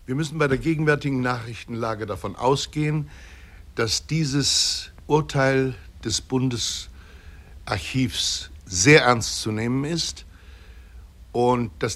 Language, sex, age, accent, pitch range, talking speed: German, male, 60-79, German, 90-130 Hz, 100 wpm